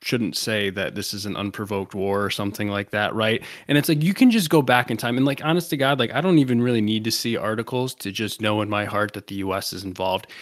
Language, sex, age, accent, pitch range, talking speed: English, male, 20-39, American, 110-165 Hz, 275 wpm